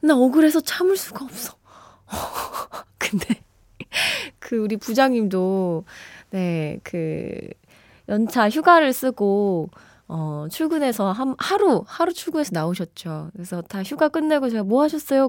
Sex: female